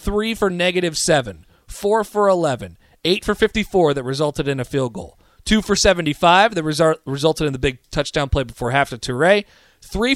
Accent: American